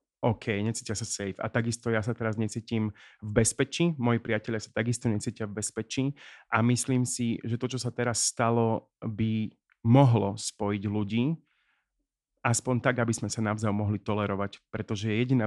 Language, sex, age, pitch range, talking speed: Slovak, male, 30-49, 110-120 Hz, 165 wpm